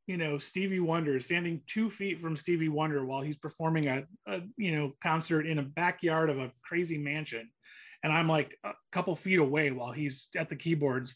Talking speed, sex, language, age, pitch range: 200 wpm, male, English, 30-49, 150-195 Hz